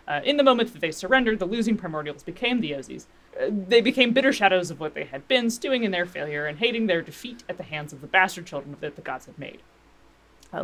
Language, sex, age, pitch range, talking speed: English, female, 20-39, 170-235 Hz, 250 wpm